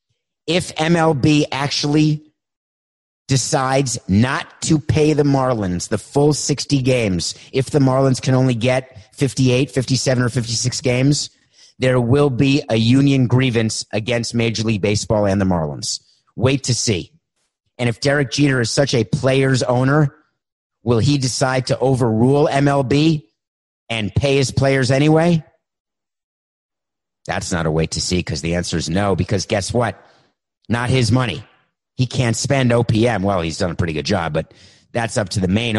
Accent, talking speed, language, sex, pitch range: American, 160 wpm, English, male, 105-135 Hz